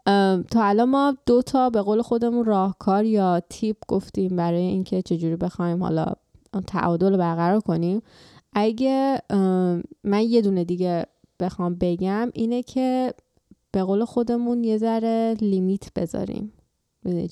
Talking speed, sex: 130 wpm, female